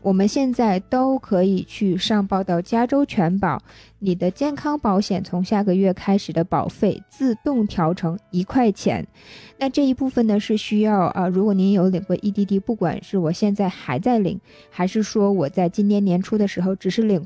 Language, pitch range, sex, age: Chinese, 180-215 Hz, female, 20-39